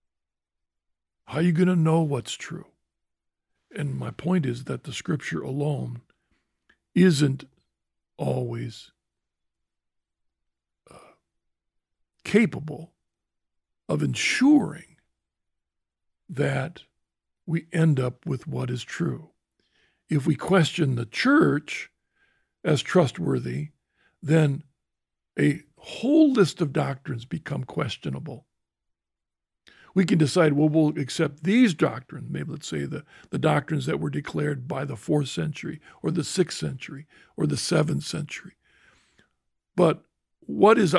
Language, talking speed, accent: English, 115 wpm, American